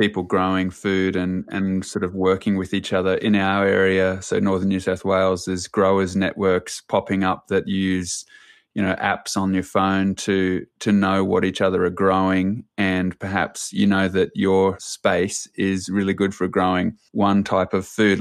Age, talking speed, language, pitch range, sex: 20-39, 185 wpm, English, 95-100 Hz, male